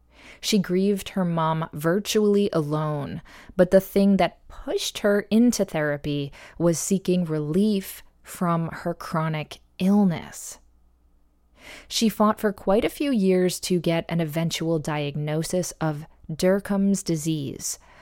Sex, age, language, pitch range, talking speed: female, 20-39, English, 155-195 Hz, 120 wpm